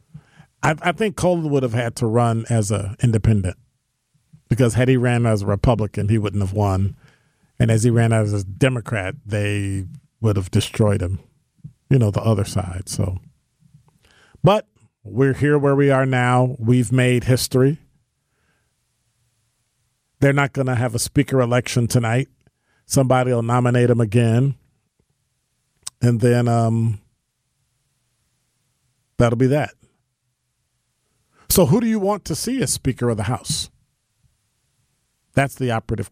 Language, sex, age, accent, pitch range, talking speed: English, male, 40-59, American, 110-135 Hz, 145 wpm